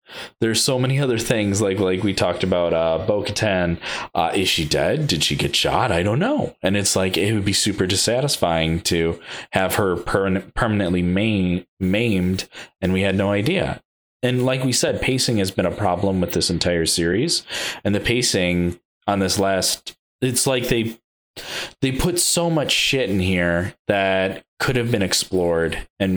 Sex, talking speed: male, 175 wpm